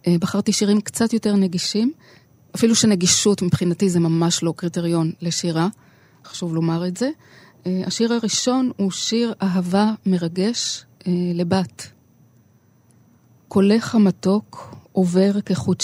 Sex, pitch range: female, 165-195 Hz